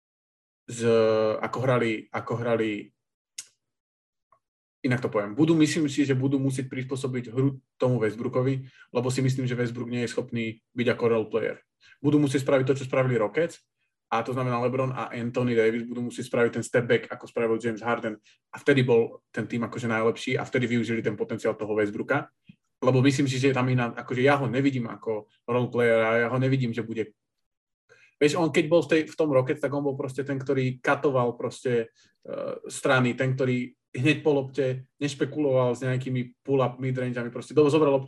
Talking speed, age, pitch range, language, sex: 180 wpm, 20-39, 115-140 Hz, Slovak, male